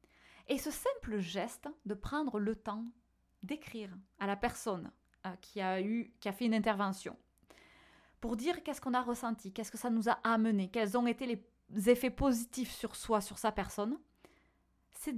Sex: female